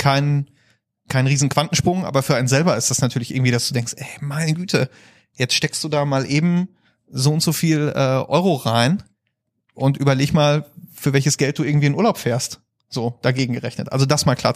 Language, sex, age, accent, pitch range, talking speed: German, male, 30-49, German, 125-150 Hz, 200 wpm